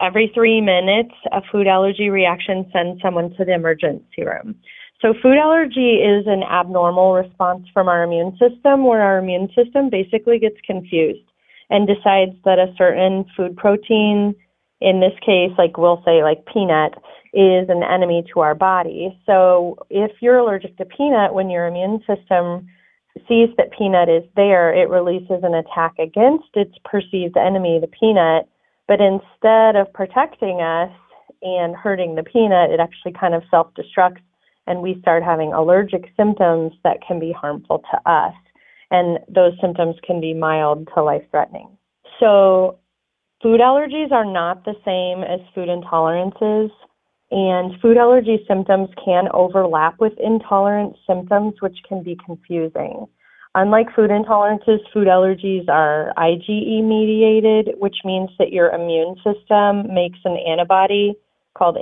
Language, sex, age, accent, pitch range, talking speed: English, female, 30-49, American, 175-210 Hz, 145 wpm